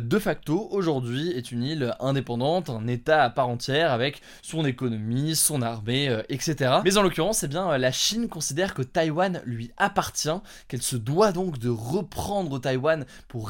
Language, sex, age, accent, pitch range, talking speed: French, male, 20-39, French, 125-170 Hz, 170 wpm